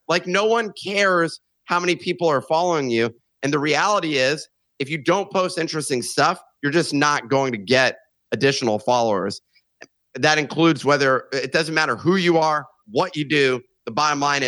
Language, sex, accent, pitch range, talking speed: English, male, American, 145-180 Hz, 180 wpm